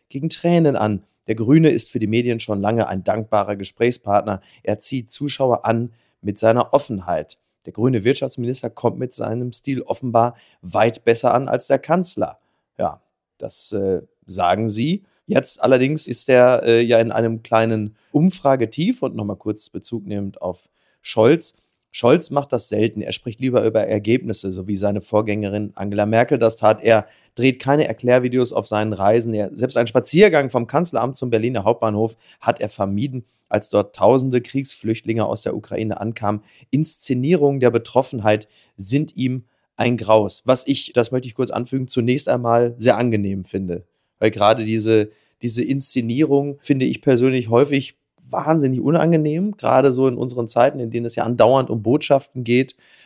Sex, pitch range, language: male, 110-130 Hz, German